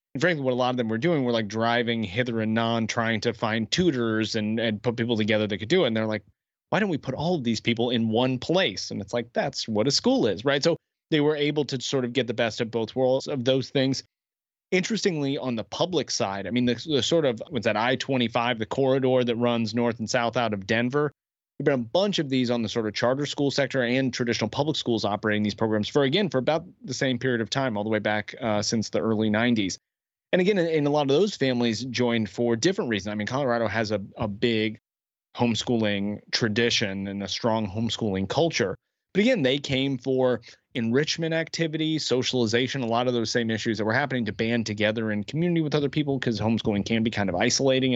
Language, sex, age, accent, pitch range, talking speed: English, male, 30-49, American, 110-135 Hz, 235 wpm